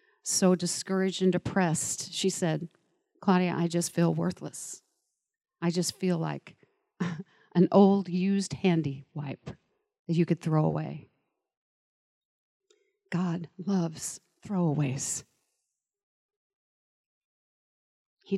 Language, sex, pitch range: English, female, 165-200 Hz